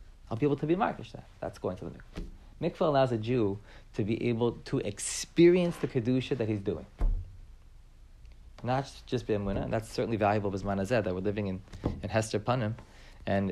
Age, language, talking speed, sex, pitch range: 30-49, English, 200 wpm, male, 100-125 Hz